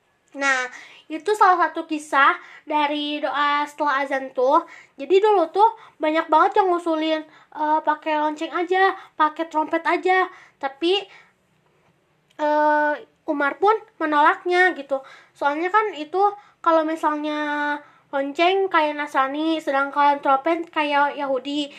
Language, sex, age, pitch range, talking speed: Indonesian, female, 20-39, 290-330 Hz, 115 wpm